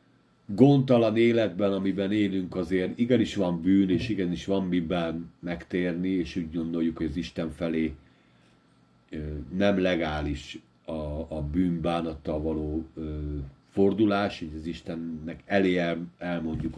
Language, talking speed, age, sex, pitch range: Hungarian, 115 wpm, 50-69, male, 80-100 Hz